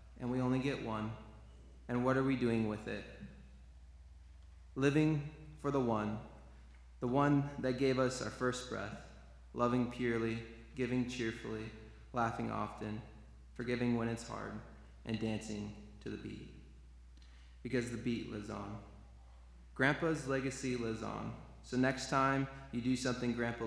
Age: 20-39